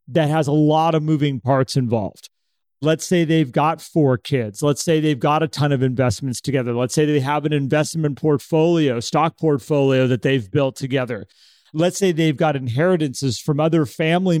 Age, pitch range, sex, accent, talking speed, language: 40-59, 140-185 Hz, male, American, 185 wpm, English